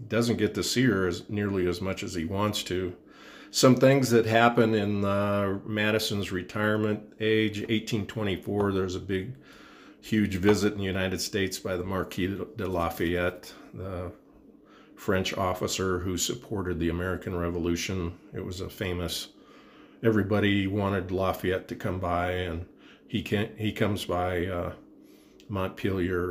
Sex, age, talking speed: male, 50-69, 145 wpm